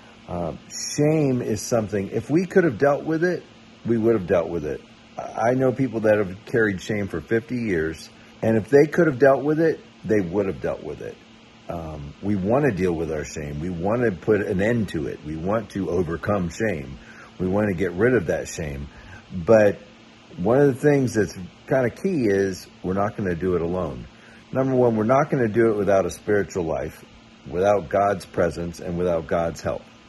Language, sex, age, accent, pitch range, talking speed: English, male, 50-69, American, 90-120 Hz, 210 wpm